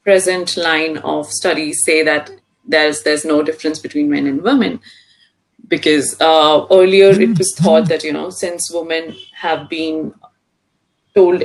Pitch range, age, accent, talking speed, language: 165-210 Hz, 30-49, Indian, 145 wpm, English